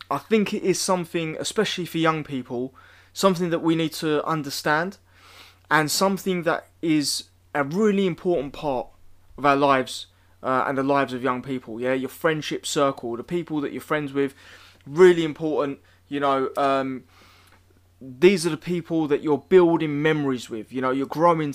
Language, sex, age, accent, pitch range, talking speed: English, male, 20-39, British, 125-170 Hz, 170 wpm